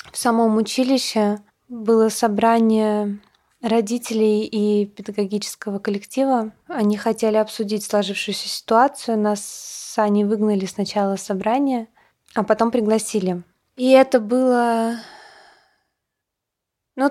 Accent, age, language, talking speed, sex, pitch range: native, 20-39, Russian, 90 wpm, female, 200-230 Hz